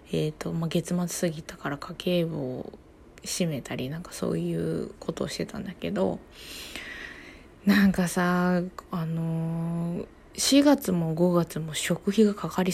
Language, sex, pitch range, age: Japanese, female, 155-205 Hz, 20-39